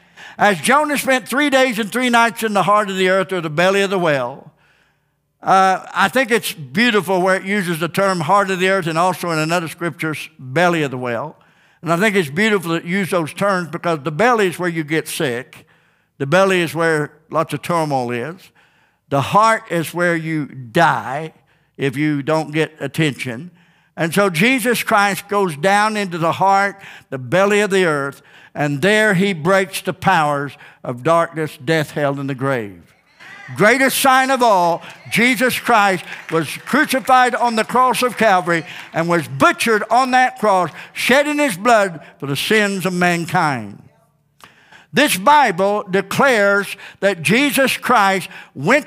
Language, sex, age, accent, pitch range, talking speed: English, male, 60-79, American, 165-245 Hz, 175 wpm